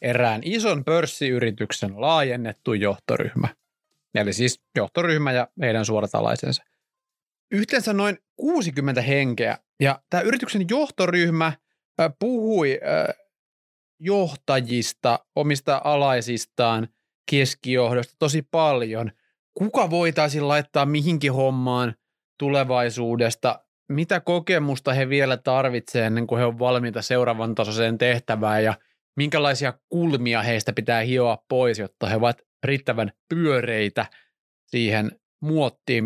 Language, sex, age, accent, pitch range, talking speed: Finnish, male, 30-49, native, 120-165 Hz, 95 wpm